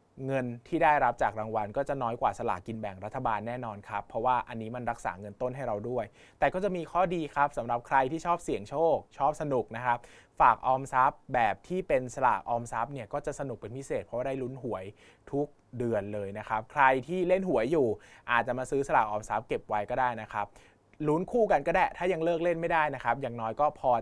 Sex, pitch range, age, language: male, 115-145 Hz, 20-39, Thai